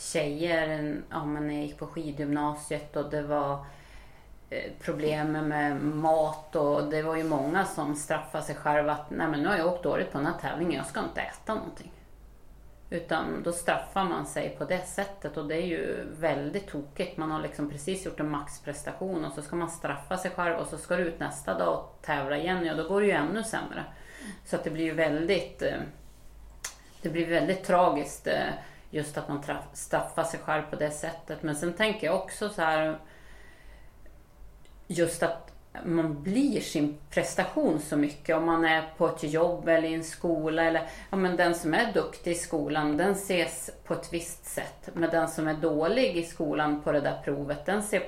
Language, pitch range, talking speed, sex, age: English, 150-175 Hz, 190 wpm, female, 30-49